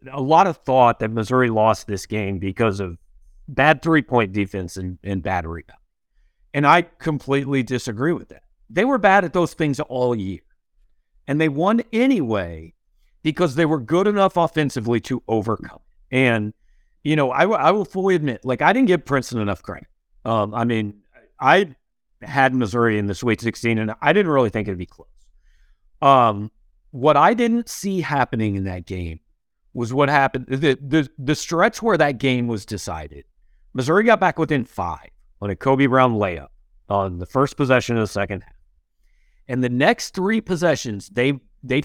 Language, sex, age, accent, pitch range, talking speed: English, male, 50-69, American, 100-150 Hz, 175 wpm